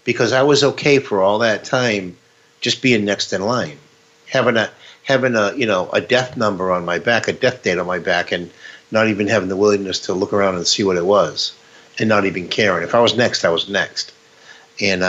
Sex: male